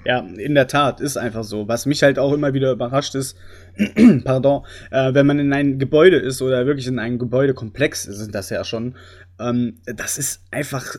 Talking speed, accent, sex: 195 wpm, German, male